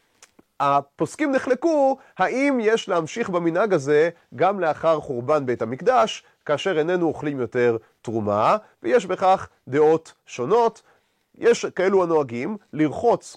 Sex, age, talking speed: male, 30-49, 110 wpm